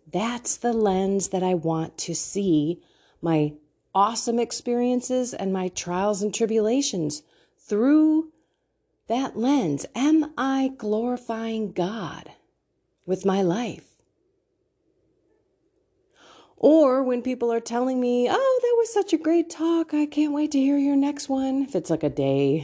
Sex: female